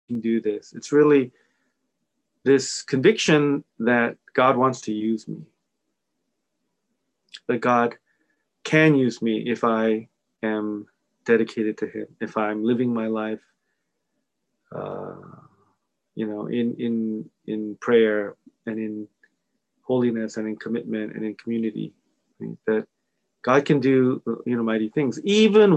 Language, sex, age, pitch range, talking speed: English, male, 30-49, 115-145 Hz, 130 wpm